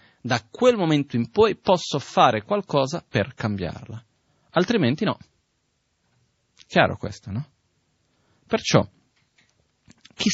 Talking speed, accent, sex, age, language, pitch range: 100 wpm, native, male, 30-49, Italian, 105-135 Hz